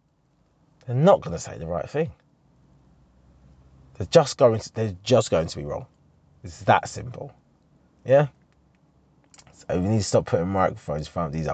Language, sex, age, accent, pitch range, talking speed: English, male, 30-49, British, 85-140 Hz, 165 wpm